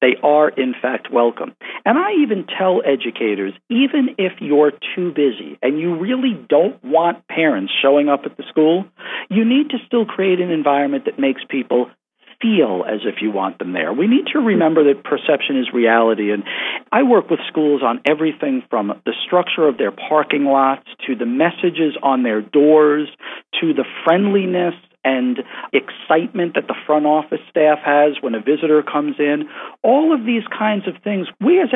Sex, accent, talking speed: male, American, 180 wpm